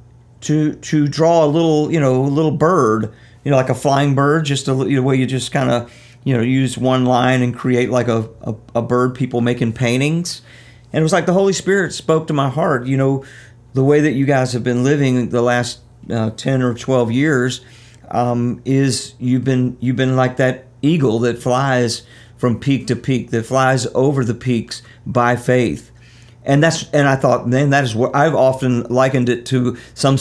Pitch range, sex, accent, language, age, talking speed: 120-140 Hz, male, American, English, 50-69, 210 wpm